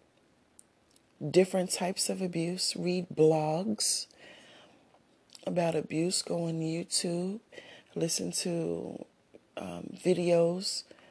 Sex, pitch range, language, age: female, 170-215 Hz, English, 40-59